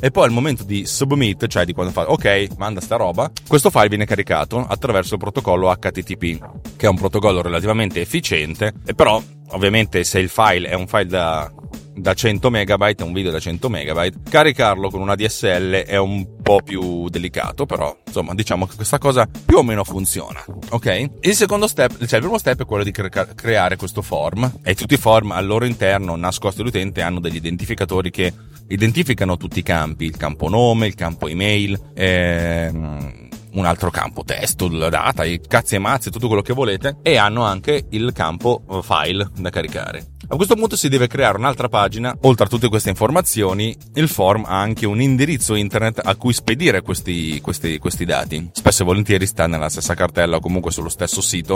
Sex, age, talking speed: male, 30-49, 195 wpm